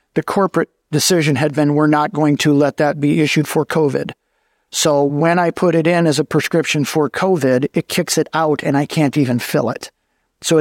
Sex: male